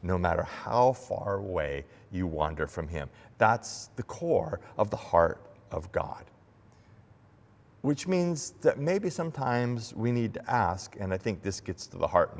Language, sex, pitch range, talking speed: English, male, 95-120 Hz, 170 wpm